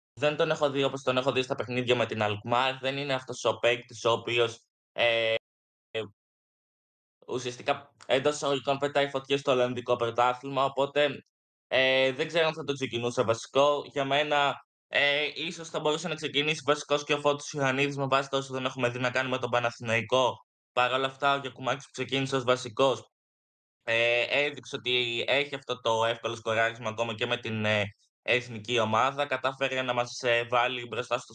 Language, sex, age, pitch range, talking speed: Greek, male, 20-39, 120-140 Hz, 175 wpm